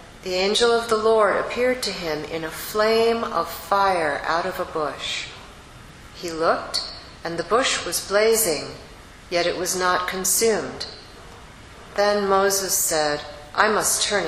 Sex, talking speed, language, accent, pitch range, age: female, 145 wpm, English, American, 165-215 Hz, 40-59